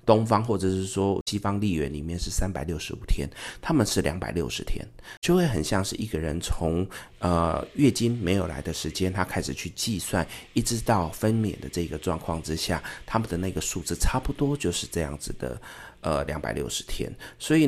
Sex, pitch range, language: male, 80-105 Hz, Chinese